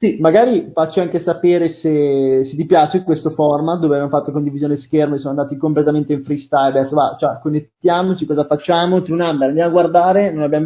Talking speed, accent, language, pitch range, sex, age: 205 wpm, native, Italian, 140-175 Hz, male, 20-39